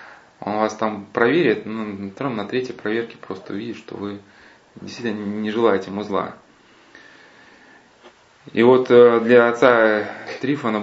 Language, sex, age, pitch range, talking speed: Russian, male, 20-39, 95-120 Hz, 120 wpm